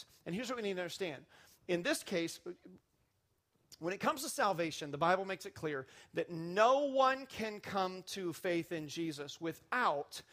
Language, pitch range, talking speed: English, 170-255 Hz, 175 wpm